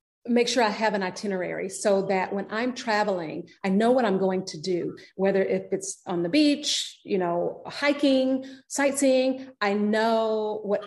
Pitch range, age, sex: 180-215 Hz, 40-59, female